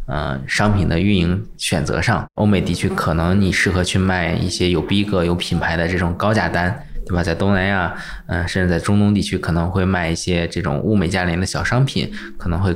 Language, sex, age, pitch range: Chinese, male, 20-39, 85-95 Hz